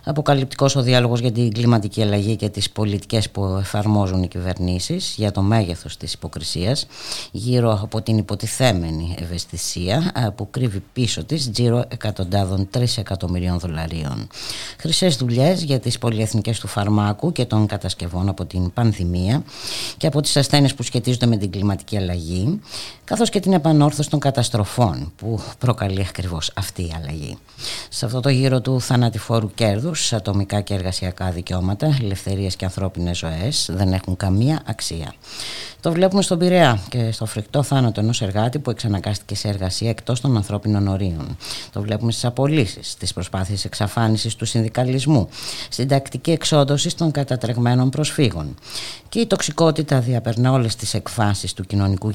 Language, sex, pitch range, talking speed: Greek, female, 95-130 Hz, 150 wpm